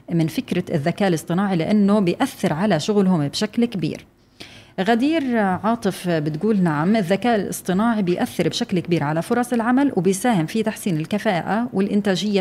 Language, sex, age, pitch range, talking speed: Arabic, female, 30-49, 170-215 Hz, 130 wpm